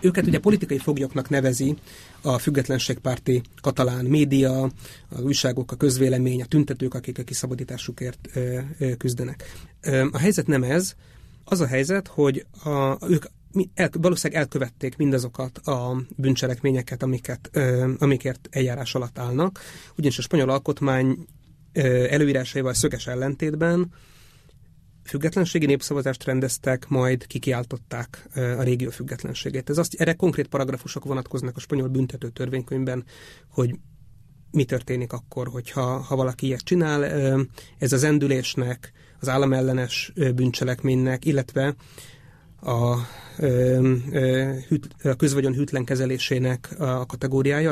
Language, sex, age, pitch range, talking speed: Hungarian, male, 30-49, 125-145 Hz, 110 wpm